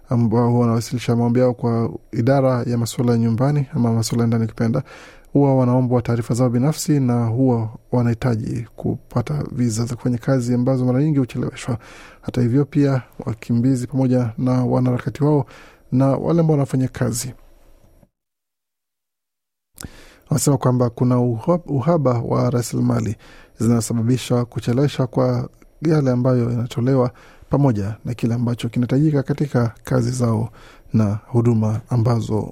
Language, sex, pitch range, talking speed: Swahili, male, 120-135 Hz, 120 wpm